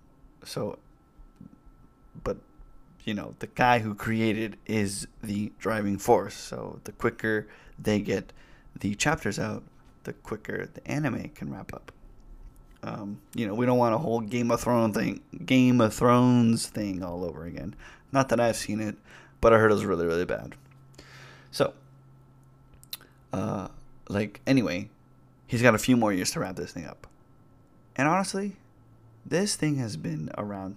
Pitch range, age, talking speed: 105-125 Hz, 20-39, 160 wpm